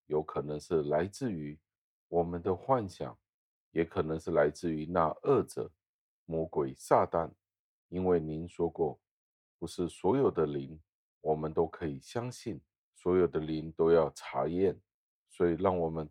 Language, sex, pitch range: Chinese, male, 75-90 Hz